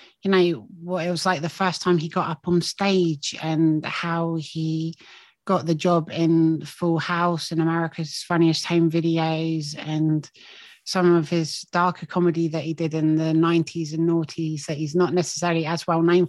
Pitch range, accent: 160-175 Hz, British